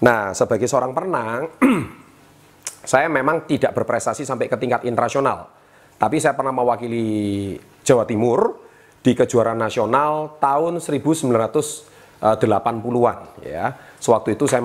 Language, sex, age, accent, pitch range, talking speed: Indonesian, male, 30-49, native, 110-150 Hz, 110 wpm